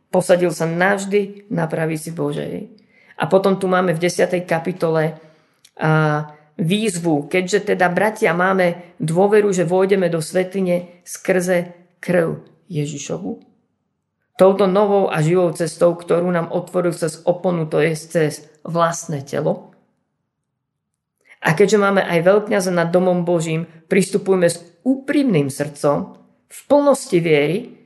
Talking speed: 125 wpm